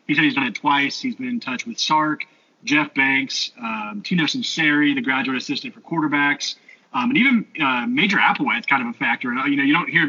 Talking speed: 225 wpm